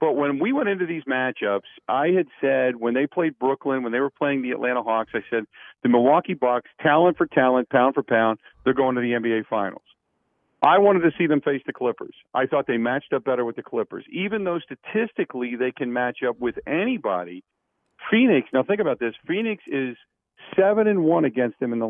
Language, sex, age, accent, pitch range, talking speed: English, male, 50-69, American, 125-170 Hz, 215 wpm